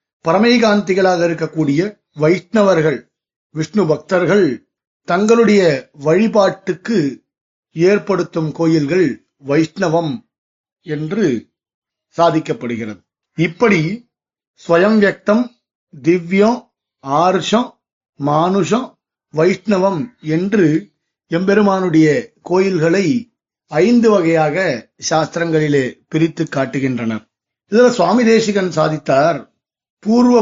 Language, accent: Tamil, native